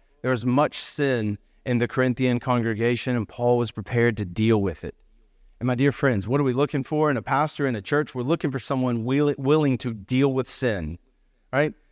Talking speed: 210 wpm